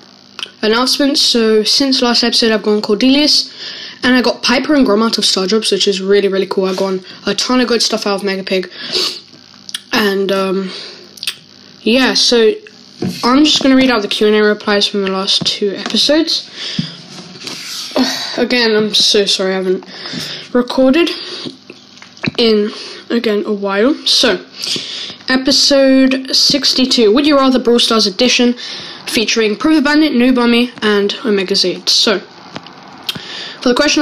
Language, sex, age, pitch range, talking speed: English, female, 10-29, 205-260 Hz, 145 wpm